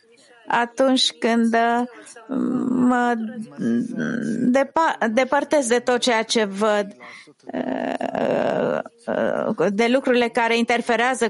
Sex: female